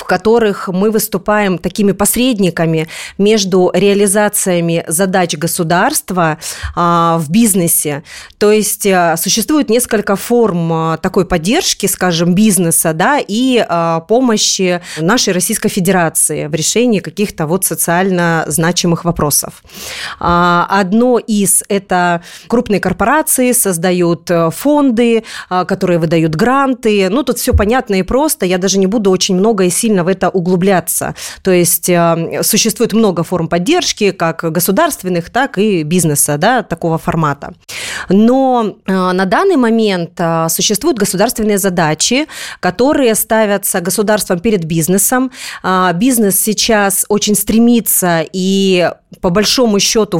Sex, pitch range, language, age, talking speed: female, 175-220 Hz, Russian, 30-49, 115 wpm